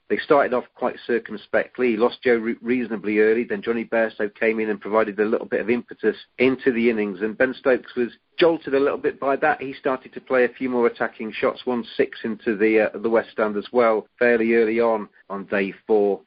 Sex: male